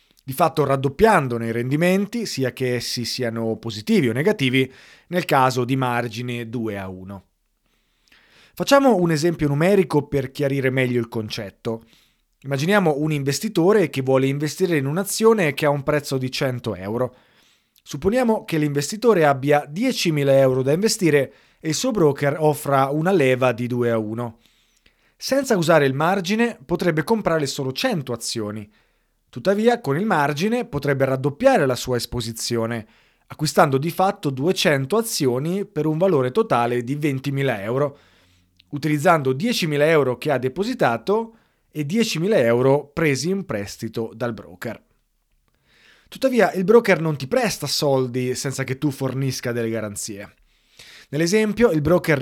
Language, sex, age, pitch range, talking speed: Italian, male, 30-49, 125-180 Hz, 140 wpm